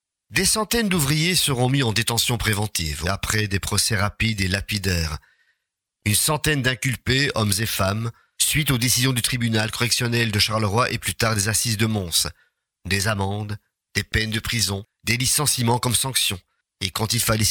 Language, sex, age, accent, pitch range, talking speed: French, male, 50-69, French, 100-120 Hz, 170 wpm